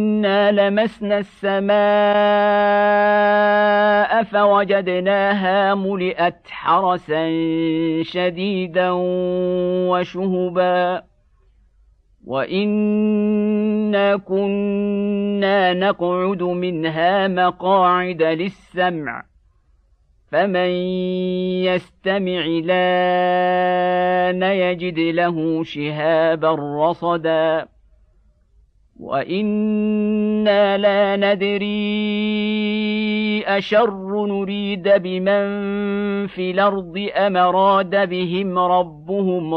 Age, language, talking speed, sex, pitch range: 50-69, Arabic, 50 wpm, male, 165-205 Hz